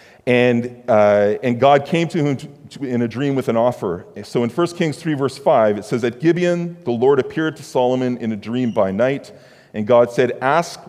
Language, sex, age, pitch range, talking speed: English, male, 40-59, 105-140 Hz, 220 wpm